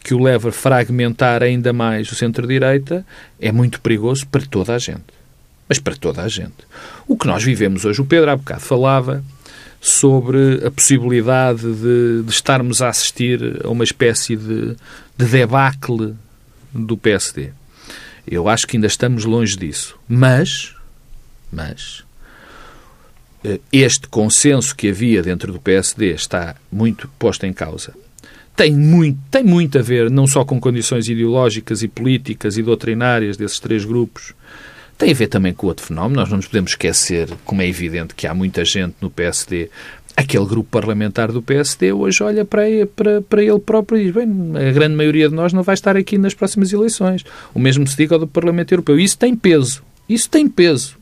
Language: Portuguese